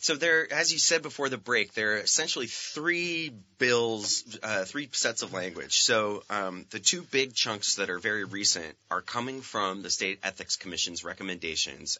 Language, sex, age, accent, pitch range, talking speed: English, male, 30-49, American, 90-110 Hz, 180 wpm